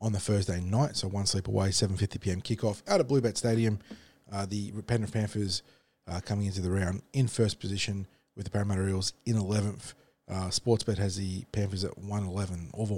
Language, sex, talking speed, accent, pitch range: English, male, 185 wpm, Australian, 95-110 Hz